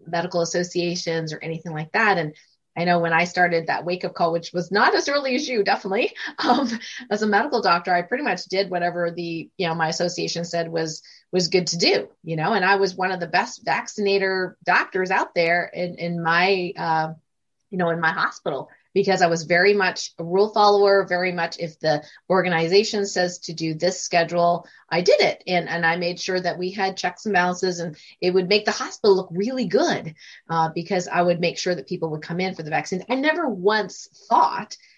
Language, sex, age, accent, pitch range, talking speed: English, female, 30-49, American, 170-200 Hz, 215 wpm